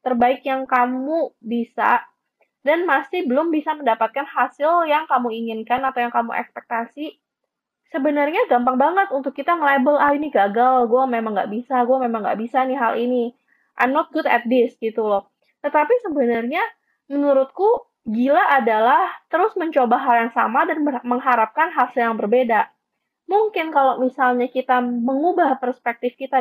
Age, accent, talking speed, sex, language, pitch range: 20-39, native, 150 wpm, female, Indonesian, 240-290 Hz